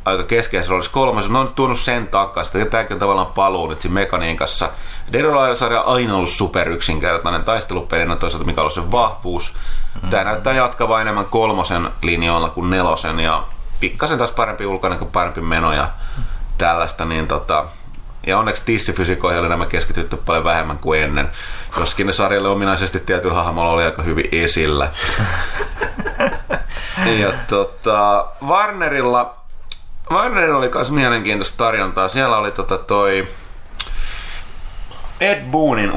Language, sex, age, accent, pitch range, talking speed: Finnish, male, 30-49, native, 85-110 Hz, 125 wpm